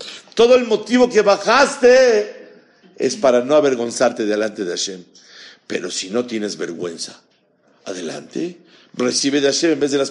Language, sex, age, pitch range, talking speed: Spanish, male, 50-69, 95-140 Hz, 150 wpm